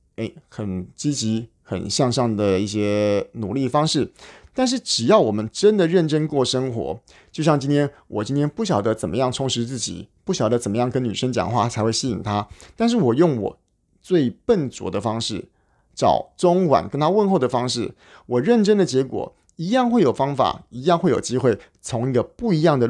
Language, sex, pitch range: Chinese, male, 105-135 Hz